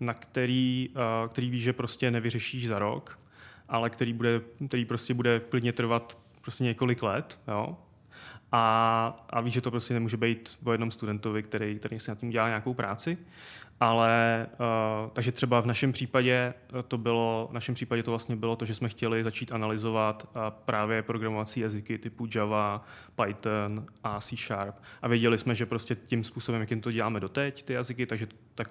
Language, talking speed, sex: Czech, 175 wpm, male